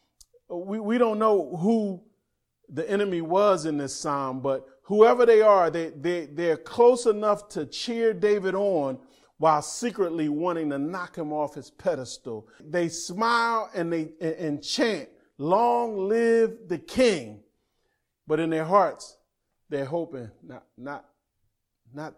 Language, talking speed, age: English, 145 wpm, 40-59